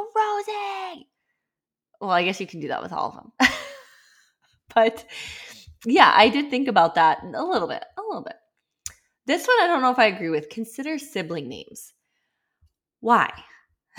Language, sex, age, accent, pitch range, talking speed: English, female, 20-39, American, 205-275 Hz, 160 wpm